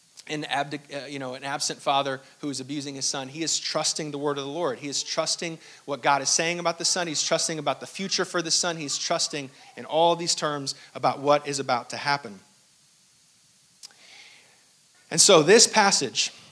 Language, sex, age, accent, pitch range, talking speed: English, male, 40-59, American, 130-155 Hz, 185 wpm